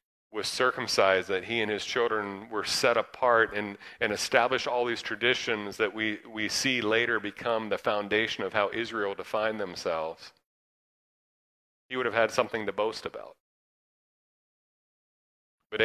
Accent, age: American, 40-59